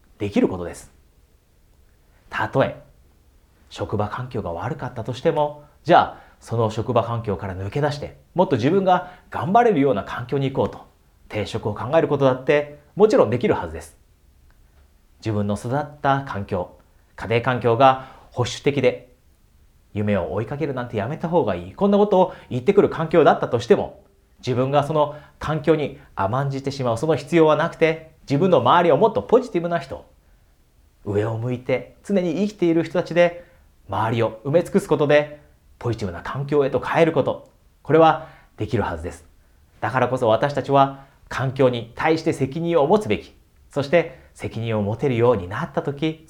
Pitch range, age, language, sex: 100-150 Hz, 40-59, Japanese, male